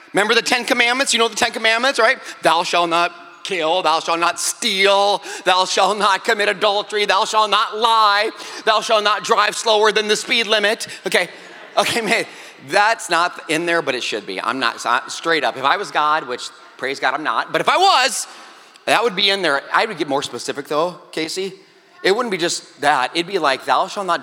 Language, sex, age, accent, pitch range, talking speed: English, male, 30-49, American, 175-275 Hz, 220 wpm